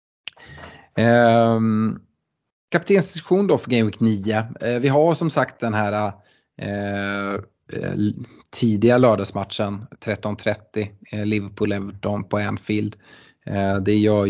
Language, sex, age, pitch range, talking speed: Swedish, male, 30-49, 105-125 Hz, 110 wpm